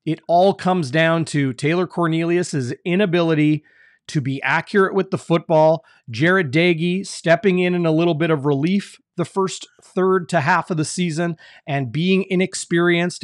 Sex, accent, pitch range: male, American, 145-175 Hz